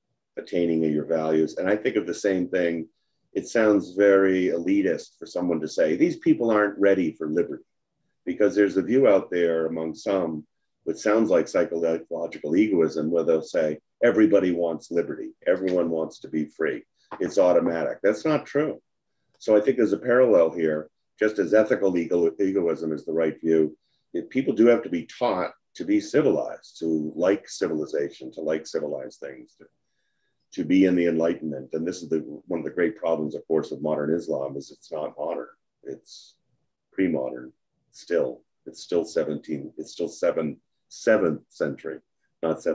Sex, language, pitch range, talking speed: male, English, 80-115 Hz, 175 wpm